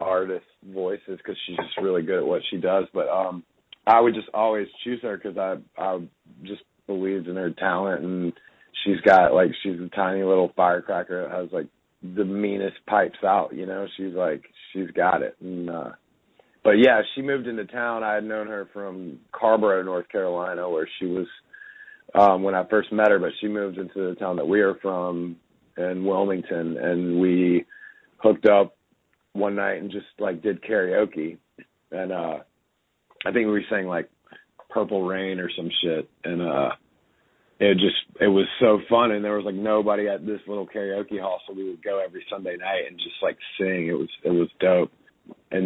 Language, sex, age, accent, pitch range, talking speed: English, male, 30-49, American, 90-105 Hz, 190 wpm